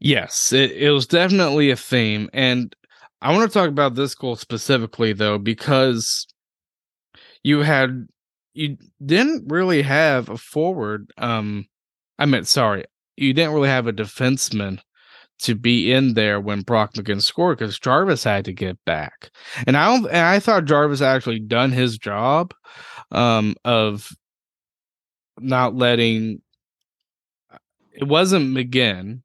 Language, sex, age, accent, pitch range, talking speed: English, male, 20-39, American, 110-145 Hz, 140 wpm